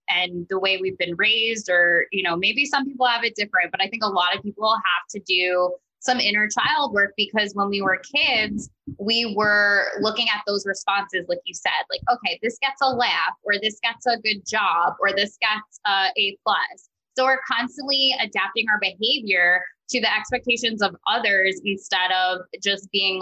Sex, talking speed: female, 195 wpm